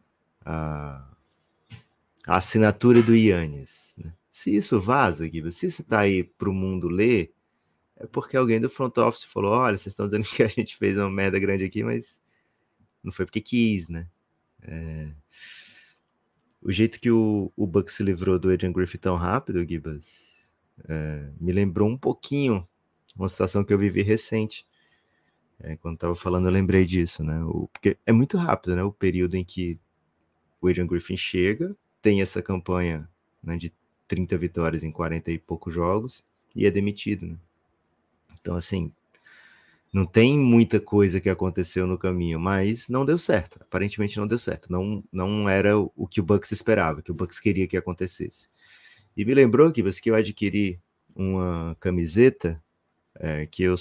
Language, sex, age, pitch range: Portuguese, male, 20-39, 85-105 Hz